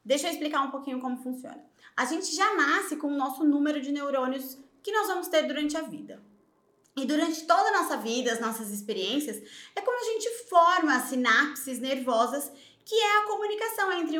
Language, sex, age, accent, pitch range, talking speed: Portuguese, female, 20-39, Brazilian, 255-320 Hz, 195 wpm